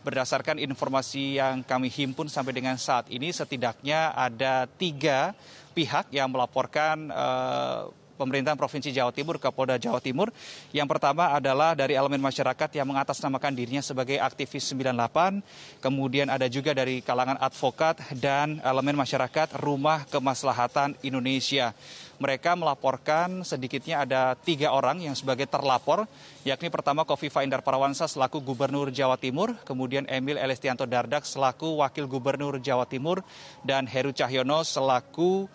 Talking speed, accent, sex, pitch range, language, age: 135 wpm, native, male, 130-155 Hz, Indonesian, 30-49